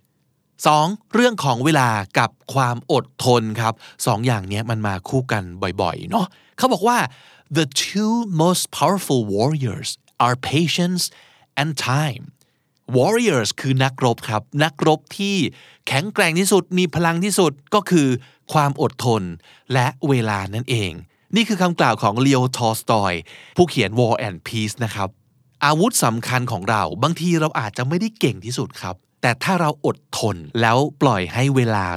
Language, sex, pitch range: Thai, male, 115-165 Hz